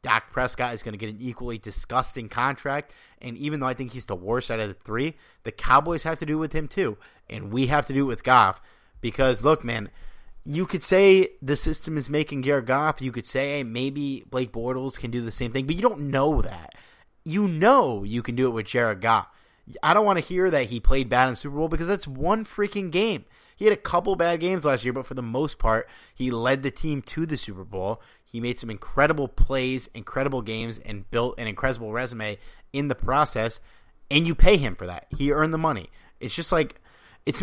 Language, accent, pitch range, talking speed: English, American, 115-150 Hz, 230 wpm